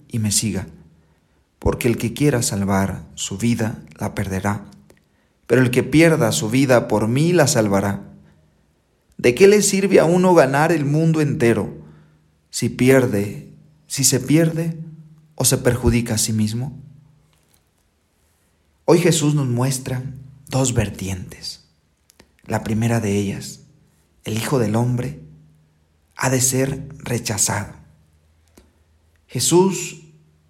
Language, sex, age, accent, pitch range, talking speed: Spanish, male, 40-59, Mexican, 100-155 Hz, 120 wpm